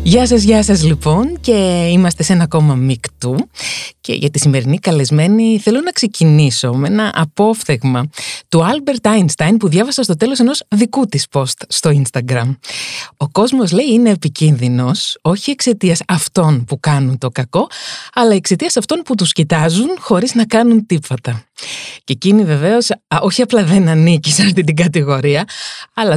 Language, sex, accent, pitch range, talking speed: Greek, female, native, 145-220 Hz, 160 wpm